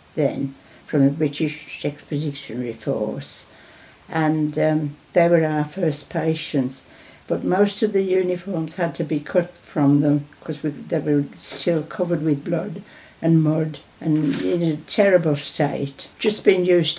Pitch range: 150-185 Hz